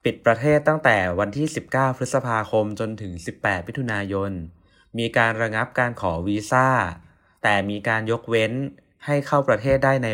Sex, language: male, Thai